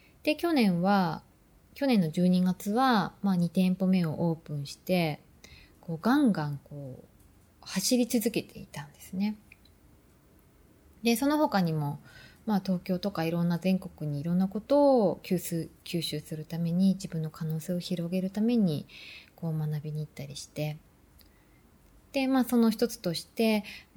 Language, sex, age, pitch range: Japanese, female, 20-39, 155-205 Hz